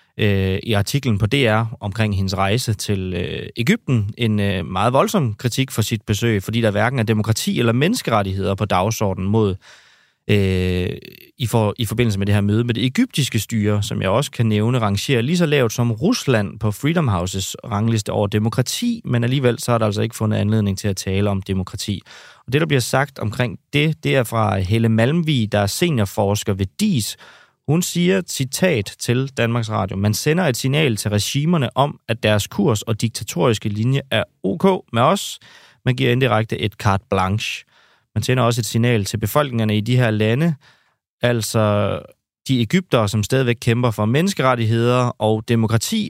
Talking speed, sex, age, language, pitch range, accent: 175 wpm, male, 30-49, Danish, 105-125 Hz, native